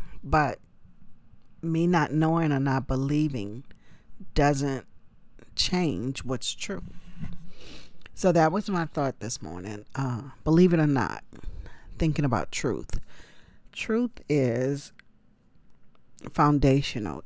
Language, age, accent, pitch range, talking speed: English, 40-59, American, 125-160 Hz, 100 wpm